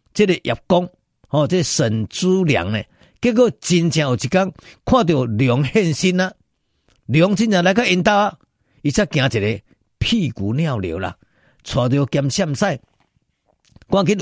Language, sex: Chinese, male